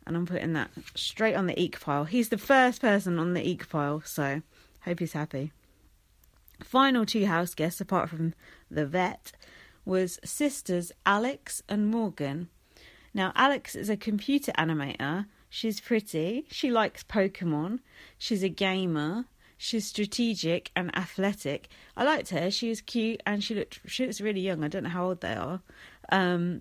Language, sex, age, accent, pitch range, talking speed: English, female, 40-59, British, 160-225 Hz, 160 wpm